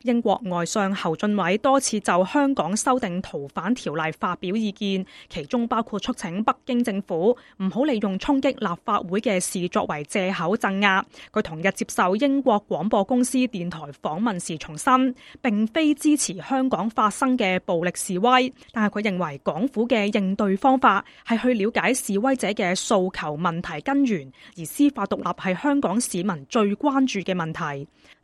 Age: 20-39